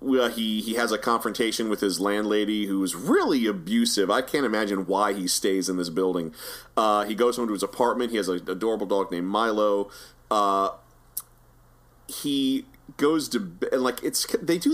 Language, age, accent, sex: English, 30-49, American, male